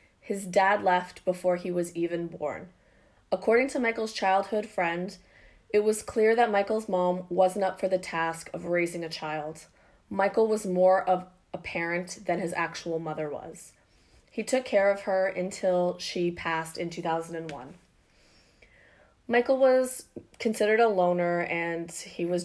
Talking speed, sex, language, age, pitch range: 150 wpm, female, English, 20-39, 170-205 Hz